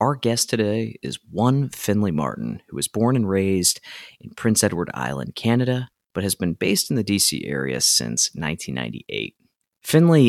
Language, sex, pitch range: English, male, 95-125 Hz